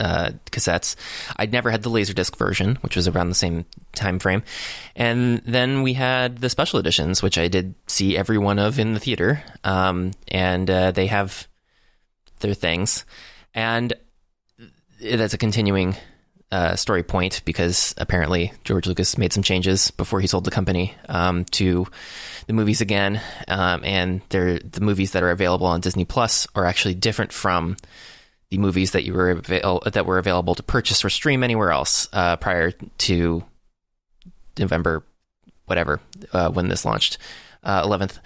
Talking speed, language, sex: 160 wpm, English, male